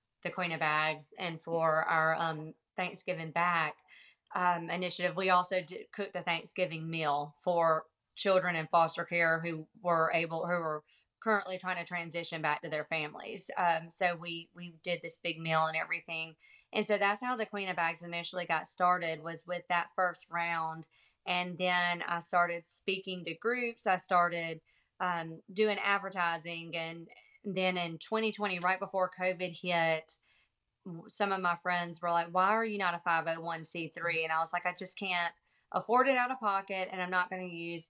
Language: English